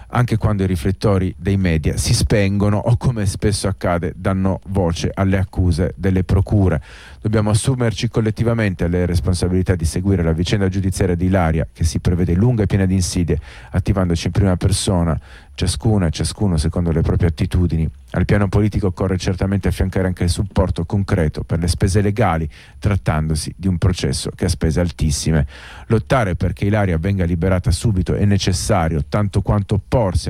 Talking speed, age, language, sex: 160 wpm, 40-59, Italian, male